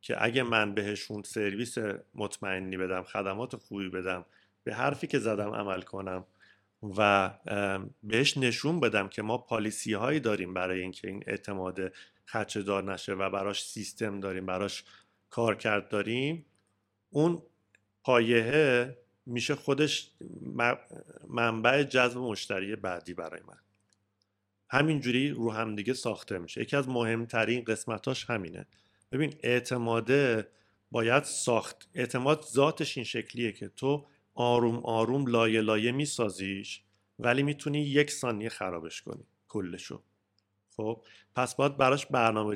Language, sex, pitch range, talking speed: Persian, male, 100-125 Hz, 120 wpm